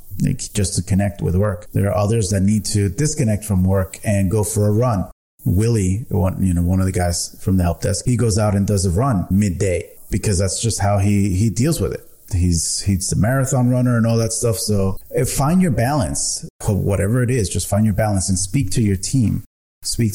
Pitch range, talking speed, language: 95-115 Hz, 225 wpm, English